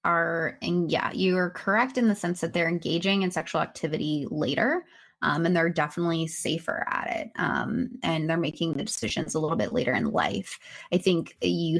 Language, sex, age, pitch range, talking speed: English, female, 20-39, 170-205 Hz, 195 wpm